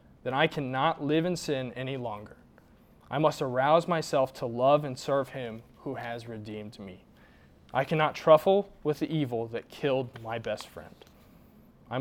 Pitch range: 110-140 Hz